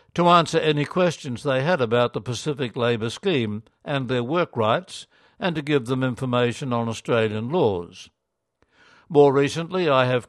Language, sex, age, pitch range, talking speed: English, male, 60-79, 120-145 Hz, 155 wpm